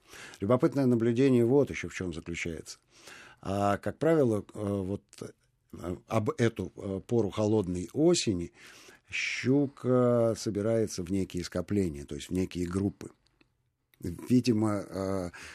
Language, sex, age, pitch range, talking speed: Russian, male, 50-69, 95-120 Hz, 100 wpm